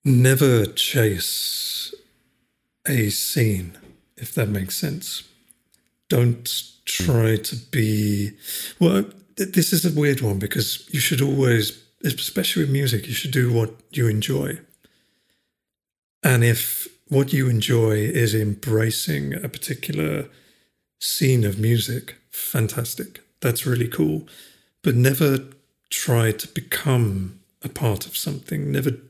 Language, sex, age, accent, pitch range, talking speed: English, male, 50-69, British, 110-140 Hz, 120 wpm